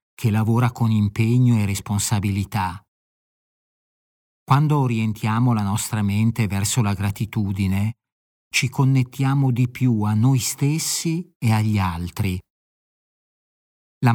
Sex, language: male, Italian